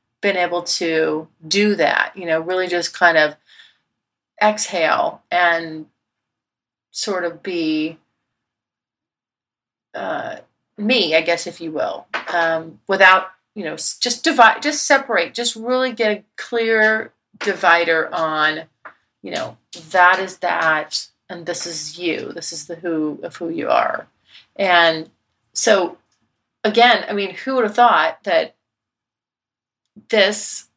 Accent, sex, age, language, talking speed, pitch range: American, female, 40-59, English, 130 wpm, 165-220 Hz